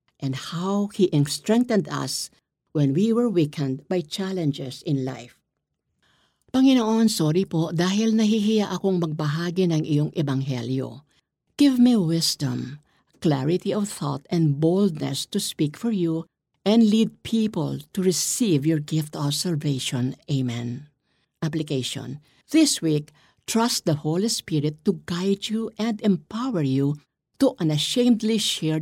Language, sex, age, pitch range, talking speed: Filipino, female, 50-69, 145-210 Hz, 125 wpm